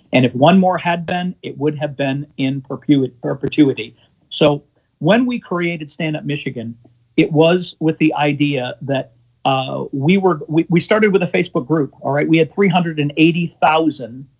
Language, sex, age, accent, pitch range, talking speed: English, male, 50-69, American, 140-165 Hz, 185 wpm